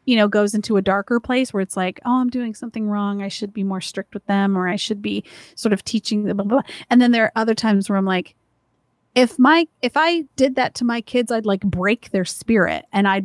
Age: 30-49